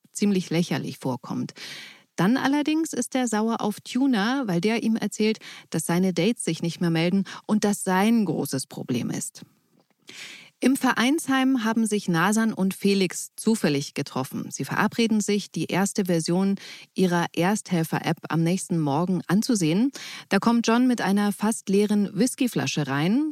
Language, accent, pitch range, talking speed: German, German, 175-225 Hz, 145 wpm